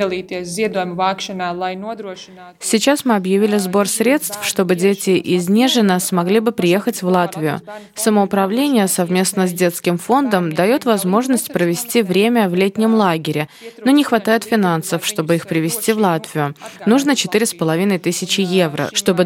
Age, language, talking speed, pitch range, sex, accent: 20-39, Russian, 125 wpm, 180-220 Hz, female, native